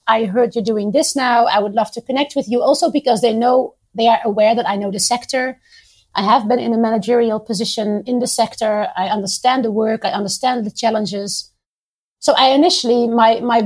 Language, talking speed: English, 210 wpm